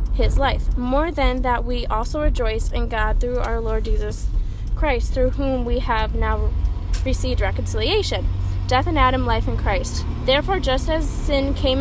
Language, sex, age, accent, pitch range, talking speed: English, female, 20-39, American, 80-100 Hz, 170 wpm